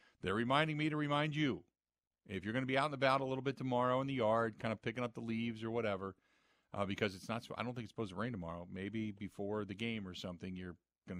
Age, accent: 50-69, American